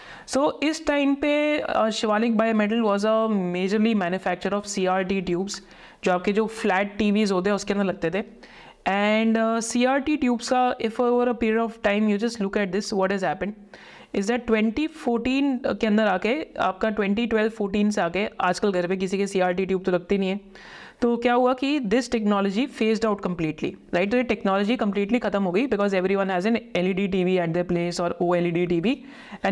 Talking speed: 210 wpm